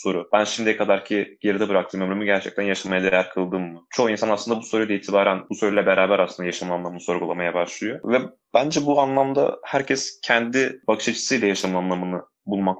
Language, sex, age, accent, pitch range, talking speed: Turkish, male, 20-39, native, 95-110 Hz, 175 wpm